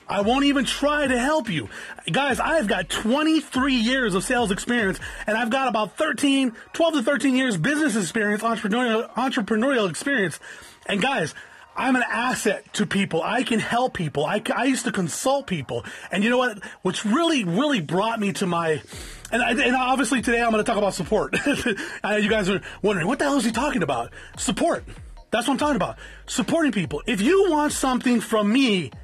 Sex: male